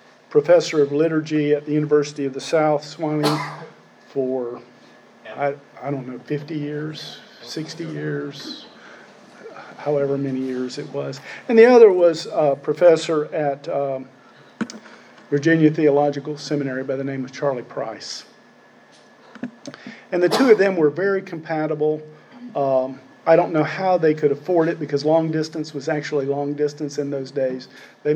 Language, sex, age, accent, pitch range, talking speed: English, male, 50-69, American, 140-160 Hz, 150 wpm